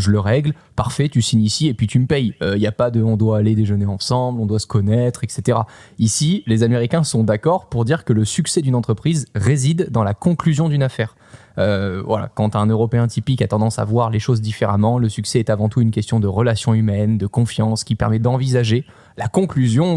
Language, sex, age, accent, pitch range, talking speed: French, male, 20-39, French, 110-130 Hz, 235 wpm